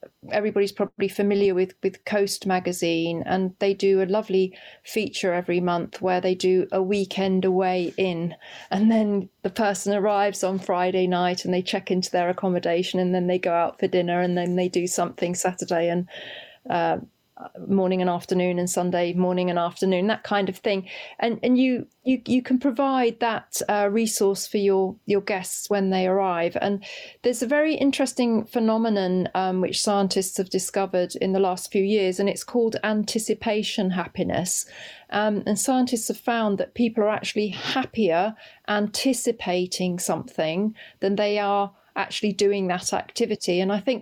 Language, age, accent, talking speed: English, 30-49, British, 165 wpm